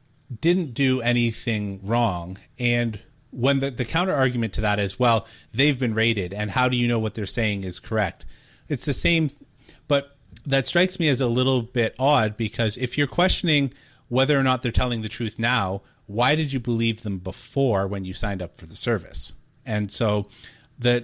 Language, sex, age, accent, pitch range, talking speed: English, male, 30-49, American, 110-135 Hz, 190 wpm